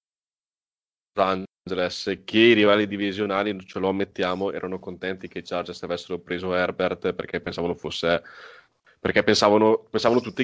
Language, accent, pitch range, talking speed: Italian, native, 90-105 Hz, 125 wpm